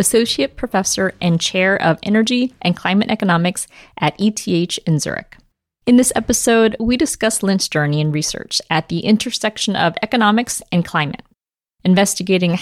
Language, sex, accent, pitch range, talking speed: English, female, American, 165-210 Hz, 145 wpm